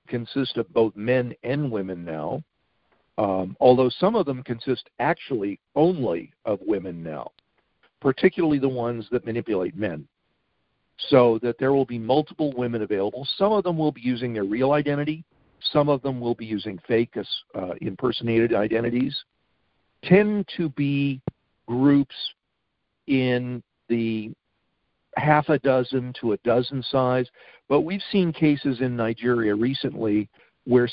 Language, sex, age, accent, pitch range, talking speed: English, male, 50-69, American, 115-140 Hz, 140 wpm